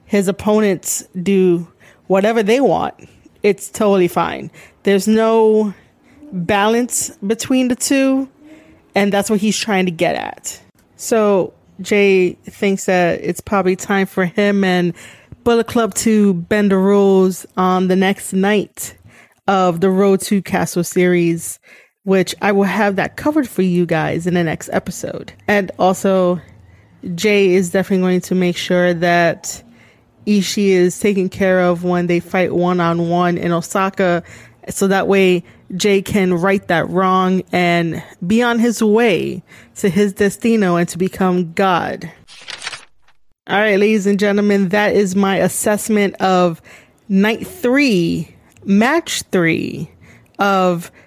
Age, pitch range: 20-39, 180-210 Hz